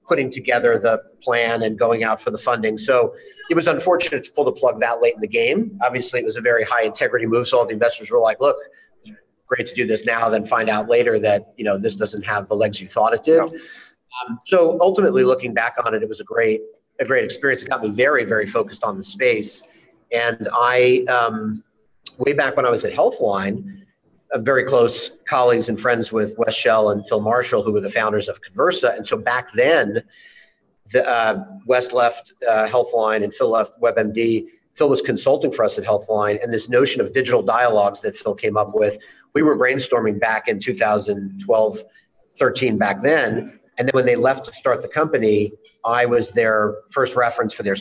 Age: 40-59